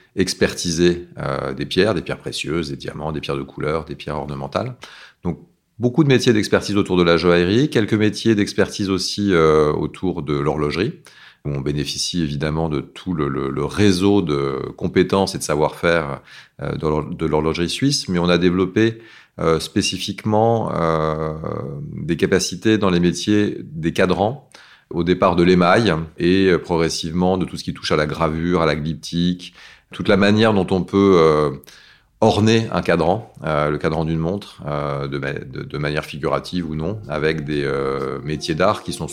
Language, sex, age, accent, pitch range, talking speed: French, male, 30-49, French, 80-115 Hz, 165 wpm